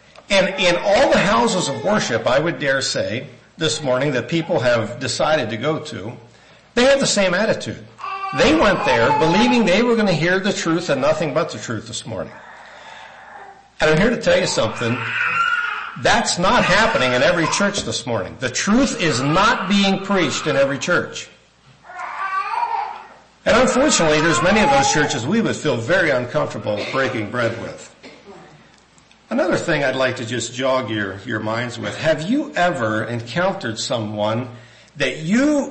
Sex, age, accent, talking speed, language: male, 60-79, American, 170 wpm, English